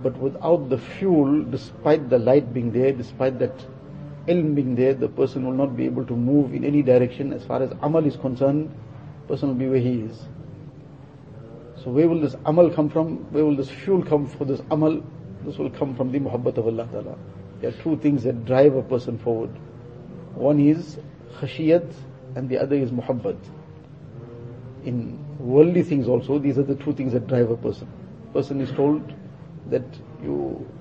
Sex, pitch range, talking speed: male, 130-145 Hz, 190 wpm